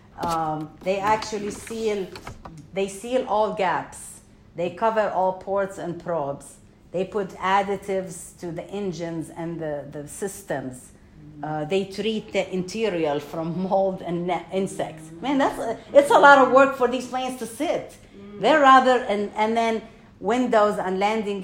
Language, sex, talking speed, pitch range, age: English, female, 150 wpm, 170-215 Hz, 50-69